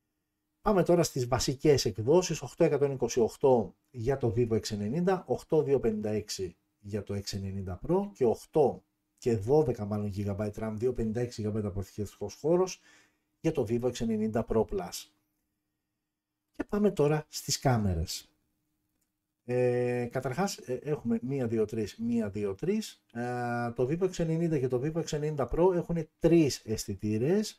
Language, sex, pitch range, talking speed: Greek, male, 105-155 Hz, 115 wpm